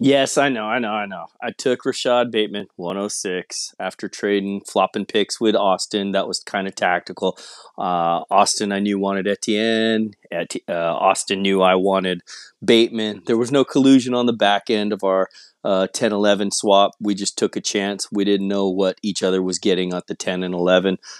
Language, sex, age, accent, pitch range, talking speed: English, male, 30-49, American, 100-145 Hz, 185 wpm